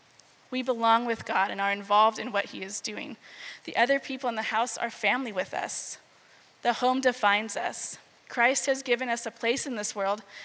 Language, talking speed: English, 200 wpm